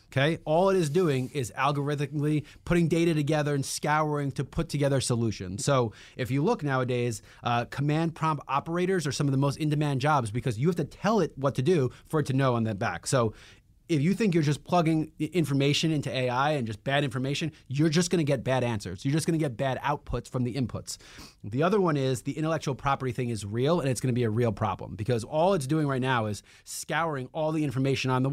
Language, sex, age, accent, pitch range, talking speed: English, male, 30-49, American, 120-155 Hz, 235 wpm